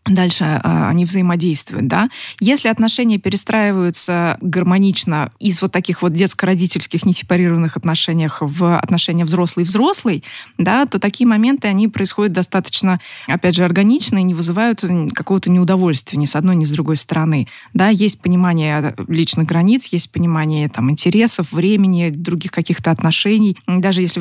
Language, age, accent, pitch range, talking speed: Russian, 20-39, native, 165-200 Hz, 130 wpm